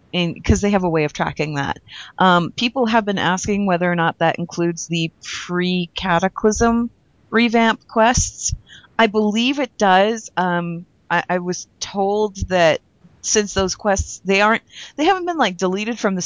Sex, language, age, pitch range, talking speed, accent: female, English, 30-49, 170-210 Hz, 165 wpm, American